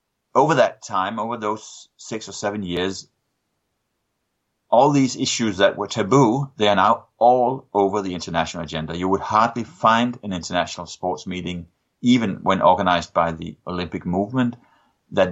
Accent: Danish